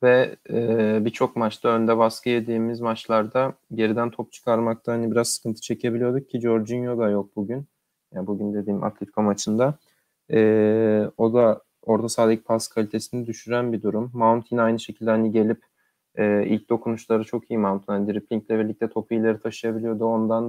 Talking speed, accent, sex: 155 wpm, native, male